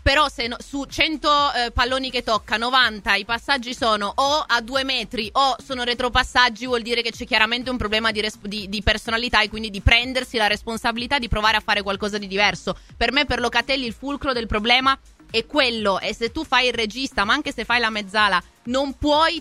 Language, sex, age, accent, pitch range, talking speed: Italian, female, 20-39, native, 195-250 Hz, 215 wpm